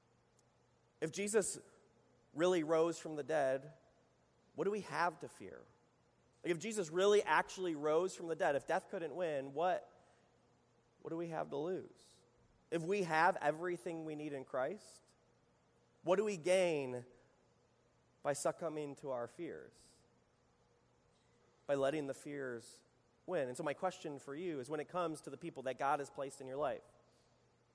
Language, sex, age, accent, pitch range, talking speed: English, male, 30-49, American, 130-170 Hz, 160 wpm